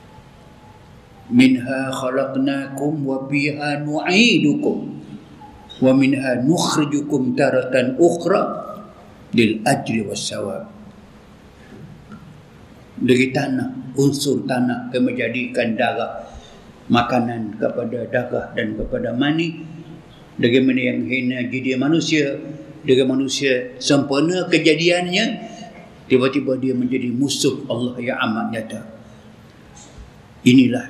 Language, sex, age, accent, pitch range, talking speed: English, male, 50-69, Indonesian, 125-150 Hz, 70 wpm